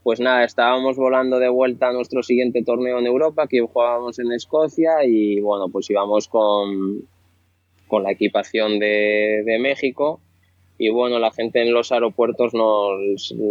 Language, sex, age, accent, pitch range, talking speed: Spanish, male, 20-39, Spanish, 100-120 Hz, 155 wpm